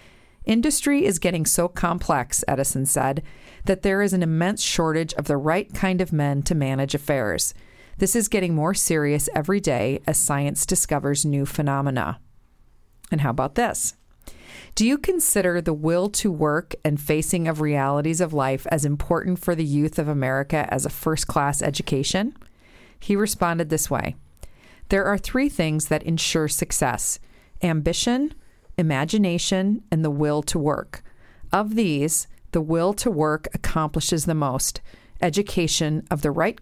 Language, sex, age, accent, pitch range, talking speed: English, female, 40-59, American, 150-185 Hz, 150 wpm